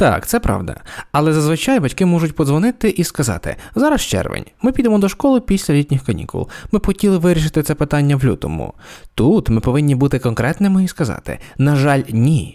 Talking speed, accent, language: 170 wpm, native, Ukrainian